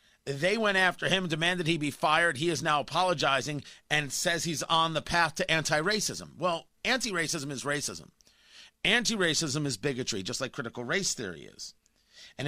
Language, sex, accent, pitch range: English, male, American, 145-190 Hz